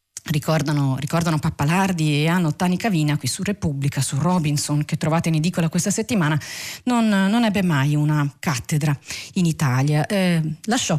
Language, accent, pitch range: Italian, native, 155-215 Hz